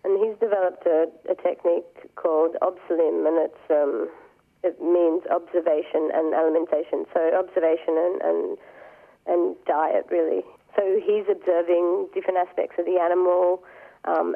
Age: 40-59